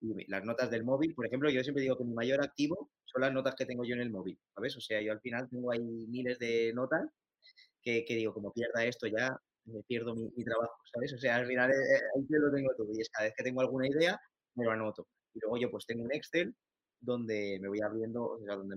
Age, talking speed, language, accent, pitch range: 20-39, 255 wpm, Spanish, Spanish, 110-135 Hz